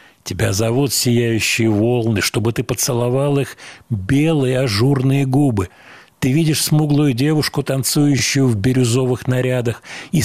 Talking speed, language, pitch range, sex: 115 wpm, Russian, 115-145 Hz, male